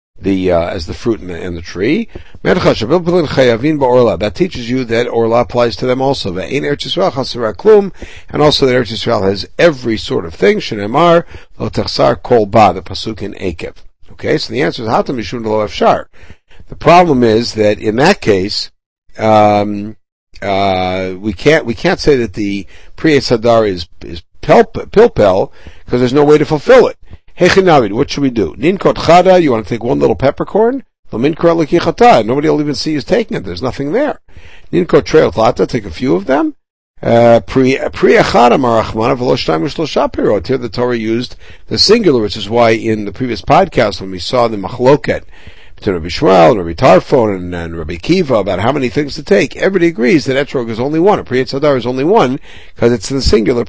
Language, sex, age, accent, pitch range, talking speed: English, male, 60-79, American, 105-145 Hz, 170 wpm